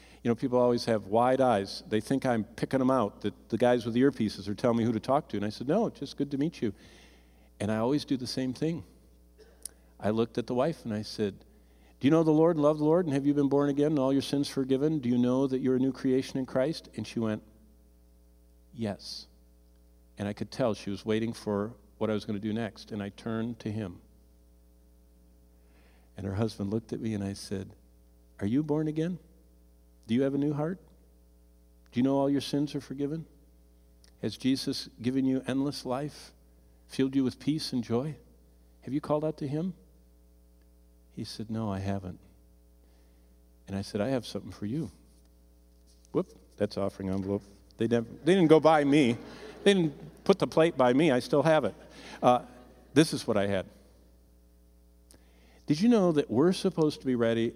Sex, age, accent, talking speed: male, 50-69, American, 205 wpm